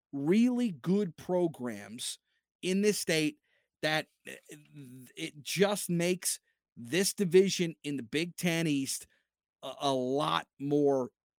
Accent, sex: American, male